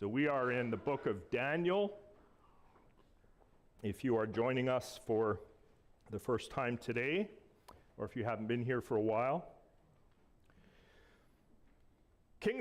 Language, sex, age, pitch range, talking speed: English, male, 40-59, 125-155 Hz, 135 wpm